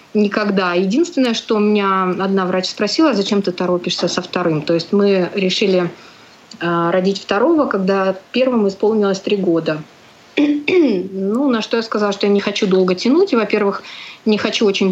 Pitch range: 185-230 Hz